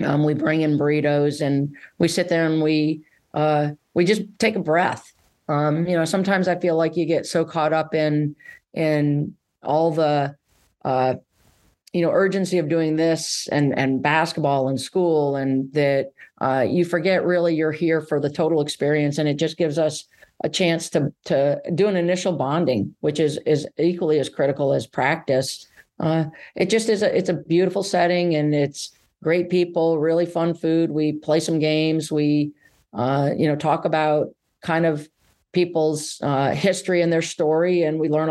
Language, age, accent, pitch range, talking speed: English, 40-59, American, 145-165 Hz, 180 wpm